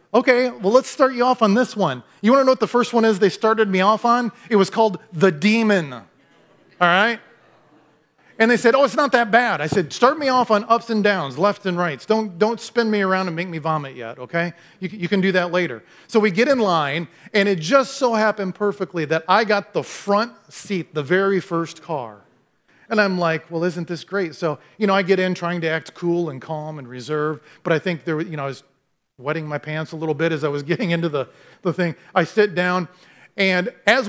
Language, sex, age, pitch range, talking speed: English, male, 30-49, 160-220 Hz, 240 wpm